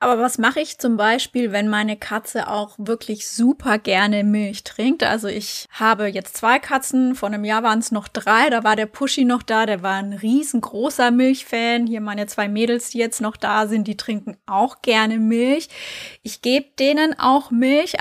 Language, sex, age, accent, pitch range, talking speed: German, female, 20-39, German, 210-250 Hz, 195 wpm